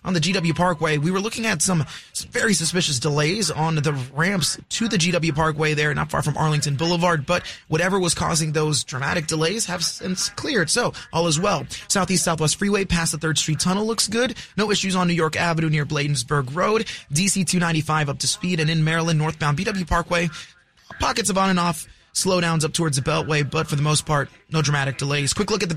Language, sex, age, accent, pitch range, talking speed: English, male, 20-39, American, 150-185 Hz, 210 wpm